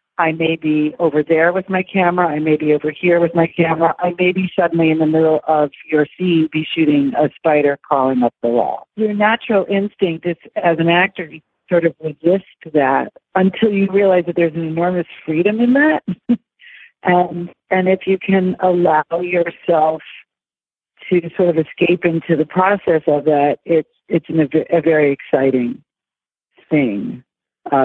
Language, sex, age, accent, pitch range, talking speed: English, female, 40-59, American, 155-185 Hz, 170 wpm